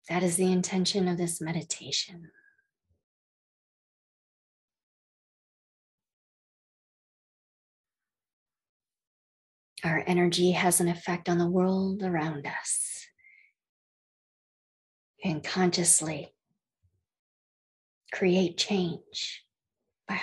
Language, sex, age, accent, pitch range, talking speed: English, female, 40-59, American, 165-190 Hz, 65 wpm